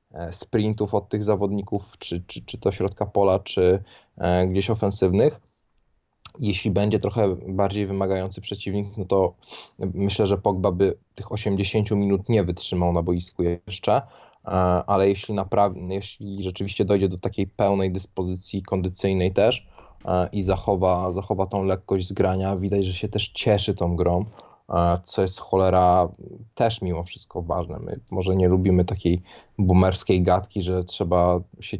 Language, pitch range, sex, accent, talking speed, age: Polish, 90-100 Hz, male, native, 140 wpm, 20-39